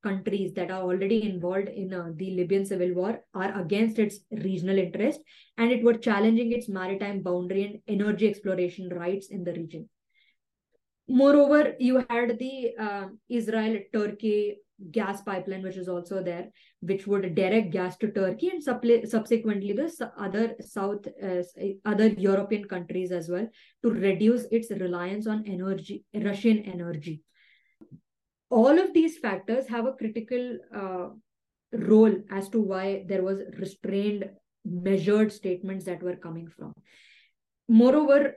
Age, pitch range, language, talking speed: 20-39, 190-230 Hz, English, 140 wpm